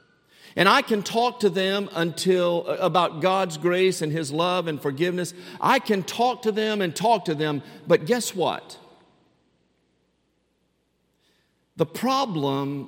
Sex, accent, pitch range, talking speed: male, American, 120-190 Hz, 135 wpm